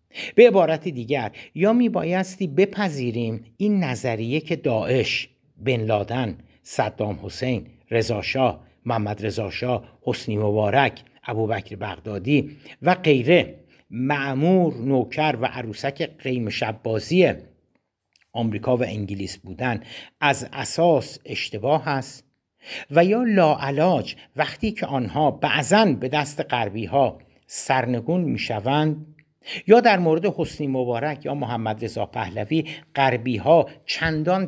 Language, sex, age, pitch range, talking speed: Persian, male, 60-79, 115-155 Hz, 110 wpm